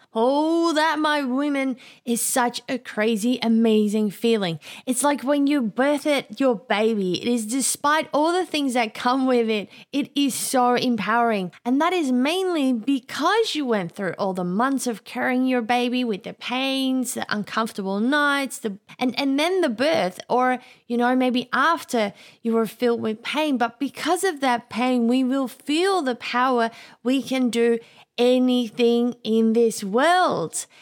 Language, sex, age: English, female, 20-39